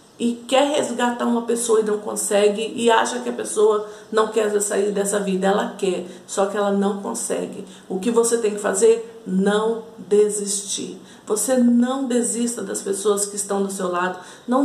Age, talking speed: 50-69, 180 wpm